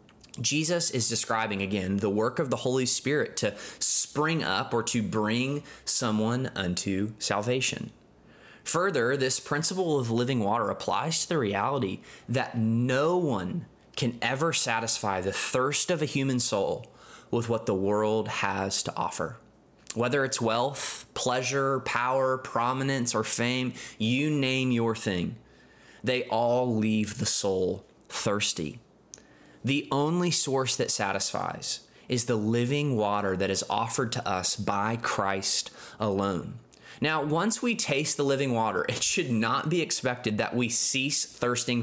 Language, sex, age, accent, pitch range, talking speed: English, male, 20-39, American, 110-140 Hz, 140 wpm